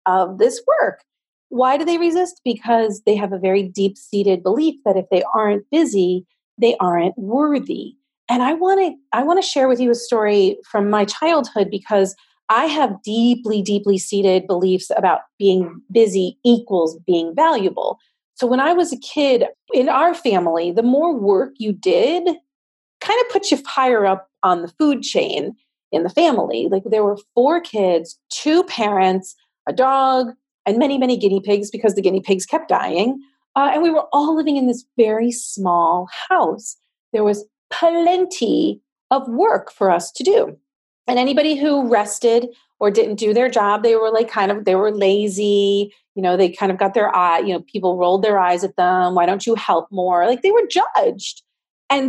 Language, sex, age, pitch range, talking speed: English, female, 30-49, 195-285 Hz, 185 wpm